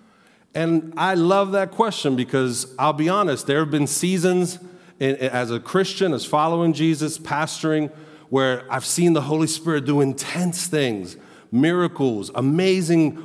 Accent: American